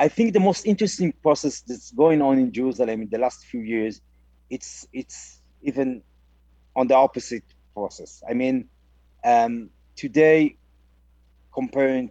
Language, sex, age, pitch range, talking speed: English, male, 40-59, 105-140 Hz, 140 wpm